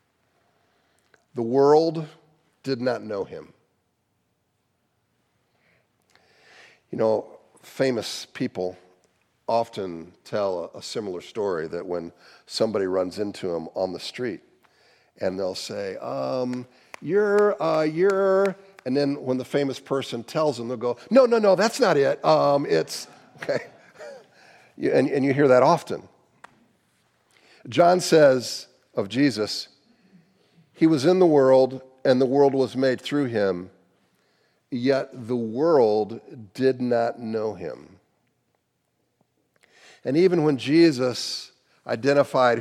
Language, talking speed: English, 120 wpm